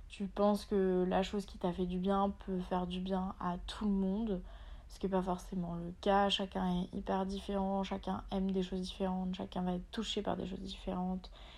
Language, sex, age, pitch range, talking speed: French, female, 20-39, 180-200 Hz, 220 wpm